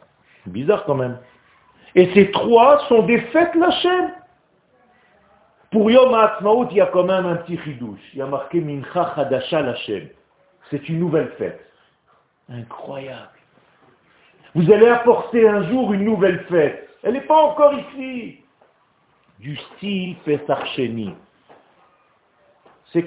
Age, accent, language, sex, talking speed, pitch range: 50-69, French, French, male, 135 wpm, 130-210 Hz